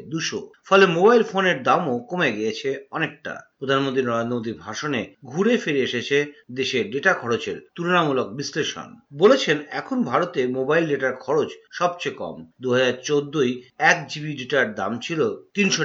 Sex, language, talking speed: male, Bengali, 55 wpm